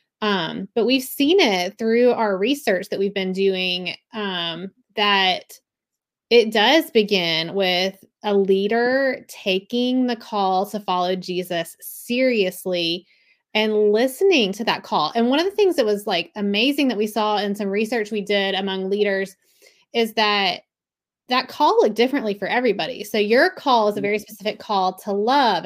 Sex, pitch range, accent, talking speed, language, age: female, 195-240 Hz, American, 160 wpm, English, 20-39